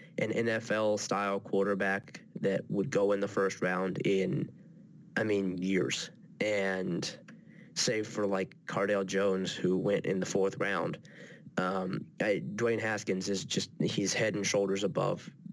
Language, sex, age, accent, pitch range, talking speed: English, male, 20-39, American, 95-115 Hz, 140 wpm